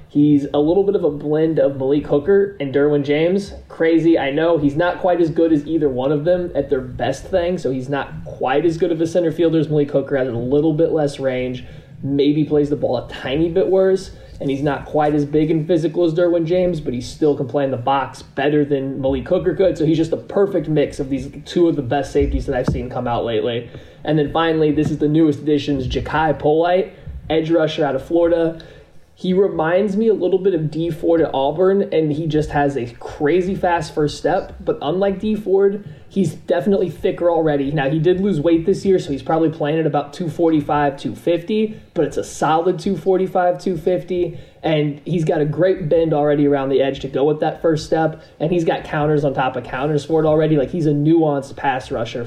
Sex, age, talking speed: male, 20-39, 225 wpm